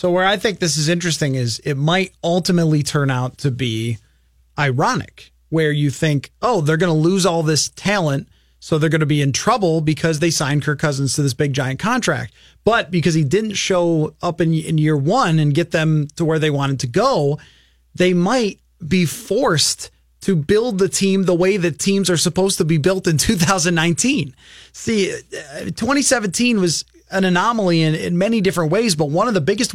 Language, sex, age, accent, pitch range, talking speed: English, male, 30-49, American, 155-195 Hz, 195 wpm